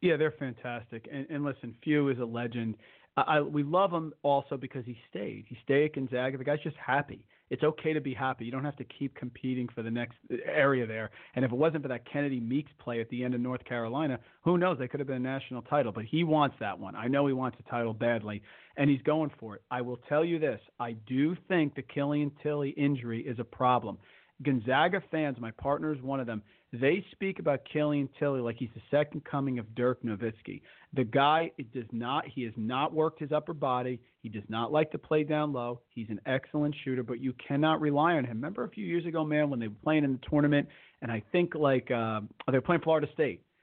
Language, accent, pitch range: English, American, 120-150 Hz